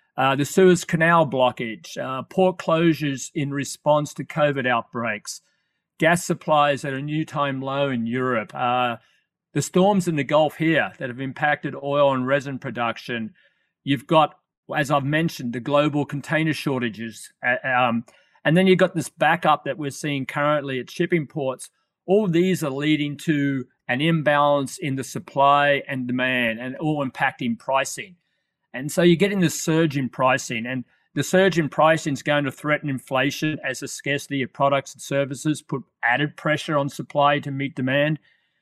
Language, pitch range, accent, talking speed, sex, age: English, 135-160 Hz, Australian, 170 wpm, male, 40-59